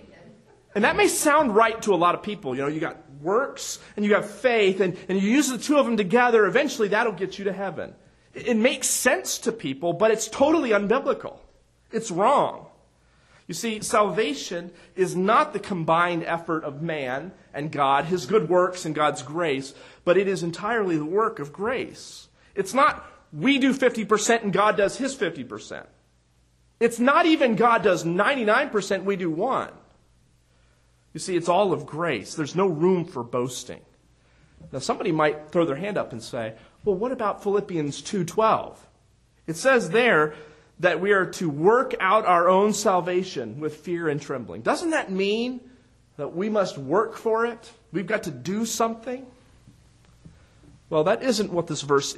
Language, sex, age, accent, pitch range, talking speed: English, male, 40-59, American, 150-220 Hz, 175 wpm